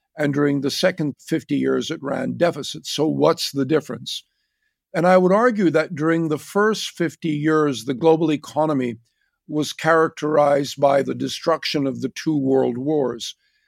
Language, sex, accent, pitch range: English, male, American, 145-175 Hz